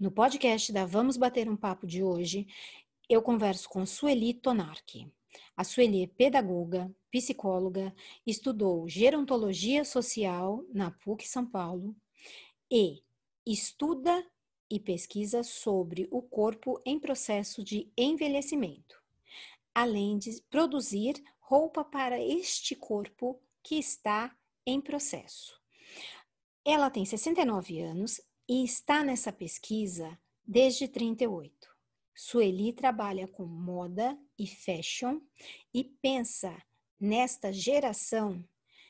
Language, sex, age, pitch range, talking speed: Portuguese, female, 40-59, 190-255 Hz, 105 wpm